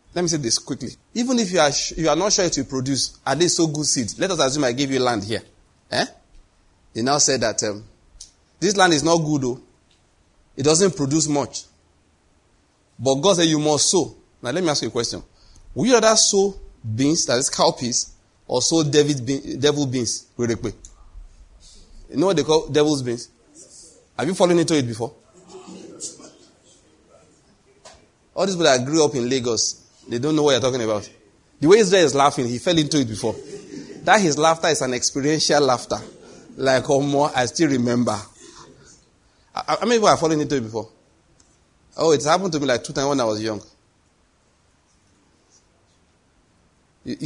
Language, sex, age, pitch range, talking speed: English, male, 30-49, 110-155 Hz, 185 wpm